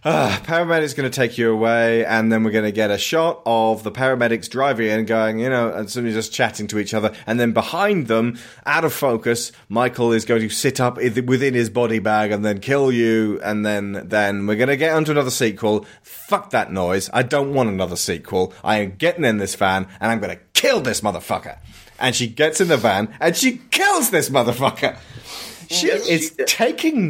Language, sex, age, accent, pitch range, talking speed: English, male, 30-49, British, 110-155 Hz, 215 wpm